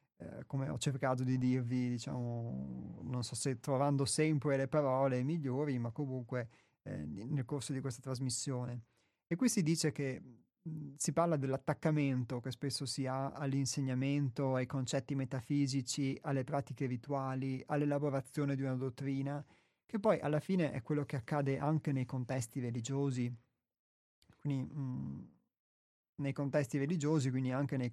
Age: 30-49